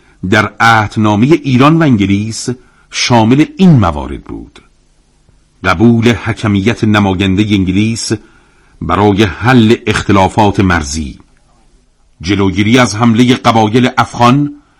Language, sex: Persian, male